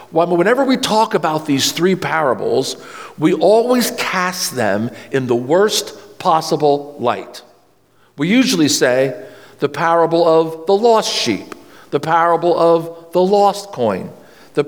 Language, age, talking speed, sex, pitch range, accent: English, 50-69, 135 wpm, male, 160-235 Hz, American